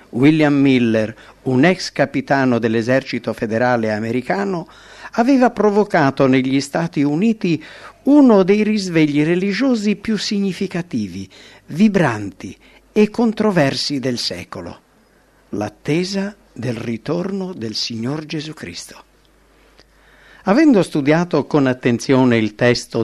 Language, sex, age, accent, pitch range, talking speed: English, male, 50-69, Italian, 130-200 Hz, 95 wpm